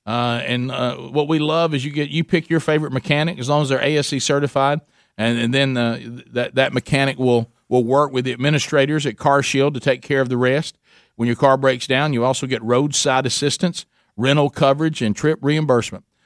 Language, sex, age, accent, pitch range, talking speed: English, male, 50-69, American, 125-160 Hz, 215 wpm